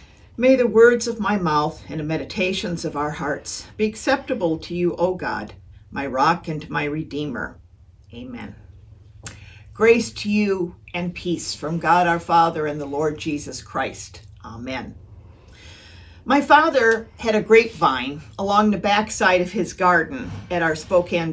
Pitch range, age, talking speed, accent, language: 140-215 Hz, 50-69, 150 wpm, American, English